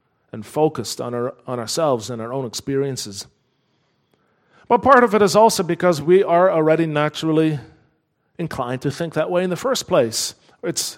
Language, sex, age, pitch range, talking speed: English, male, 40-59, 135-190 Hz, 170 wpm